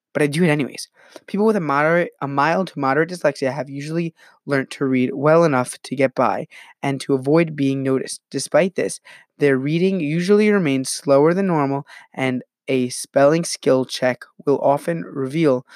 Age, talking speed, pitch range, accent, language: 20-39, 175 wpm, 130-165 Hz, American, English